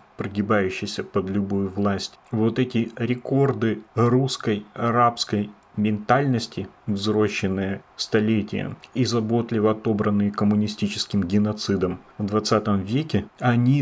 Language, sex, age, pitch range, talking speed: Russian, male, 30-49, 105-125 Hz, 90 wpm